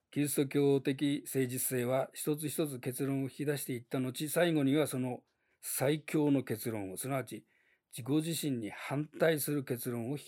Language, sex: Japanese, male